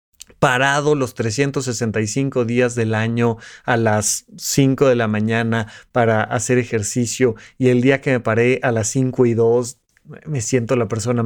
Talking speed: 160 wpm